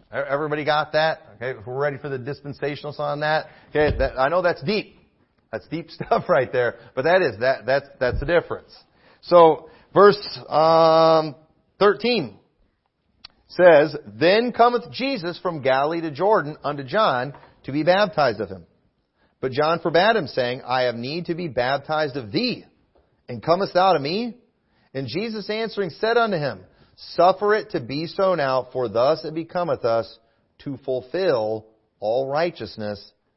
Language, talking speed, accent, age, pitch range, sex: English, 155 wpm, American, 40-59, 125-175 Hz, male